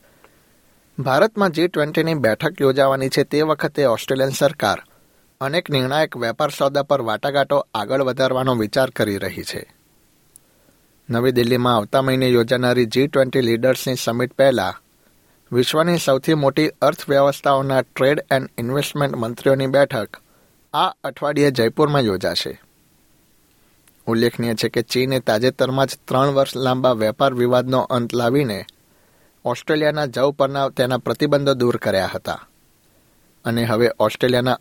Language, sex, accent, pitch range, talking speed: Gujarati, male, native, 120-140 Hz, 120 wpm